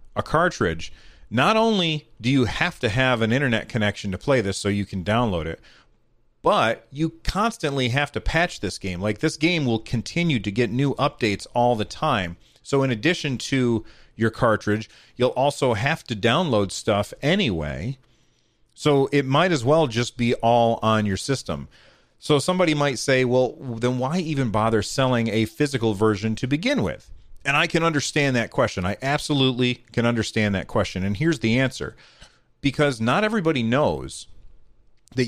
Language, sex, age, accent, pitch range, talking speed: English, male, 40-59, American, 110-145 Hz, 170 wpm